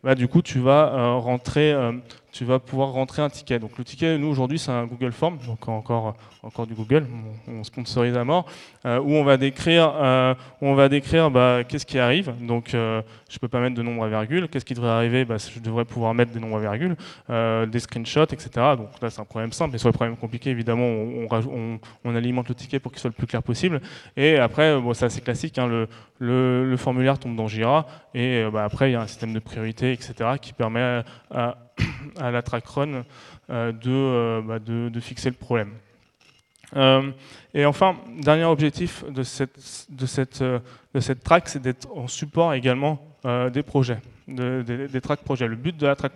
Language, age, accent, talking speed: French, 20-39, French, 225 wpm